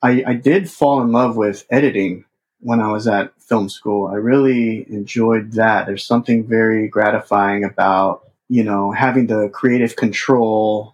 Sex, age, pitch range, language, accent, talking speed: male, 30-49, 105-130 Hz, English, American, 160 wpm